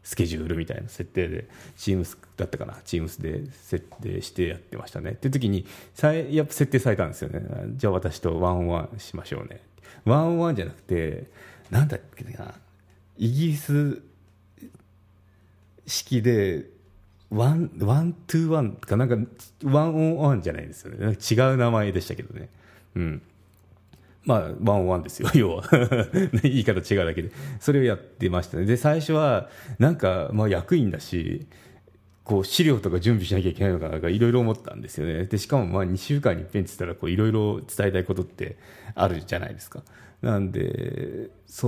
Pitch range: 95-125 Hz